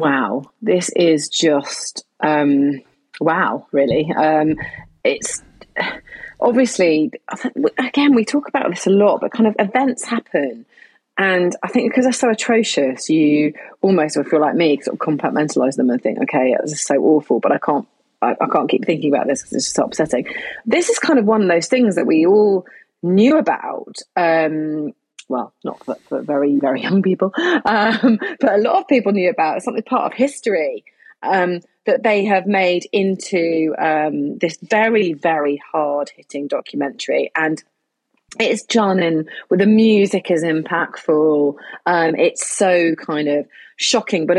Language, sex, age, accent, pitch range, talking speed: English, female, 30-49, British, 160-240 Hz, 165 wpm